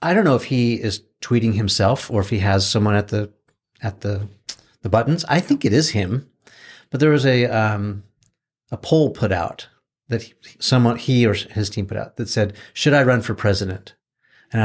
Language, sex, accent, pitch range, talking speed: English, male, American, 105-130 Hz, 205 wpm